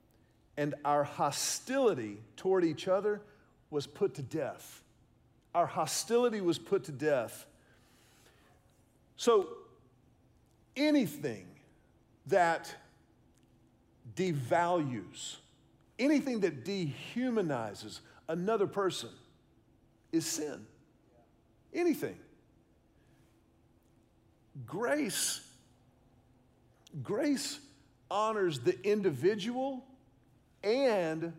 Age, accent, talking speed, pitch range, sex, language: 50-69, American, 65 wpm, 145-235 Hz, male, English